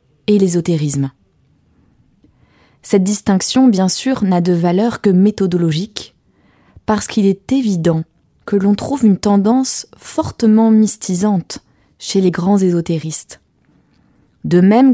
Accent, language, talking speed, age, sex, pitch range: French, French, 115 wpm, 20-39, female, 165-215 Hz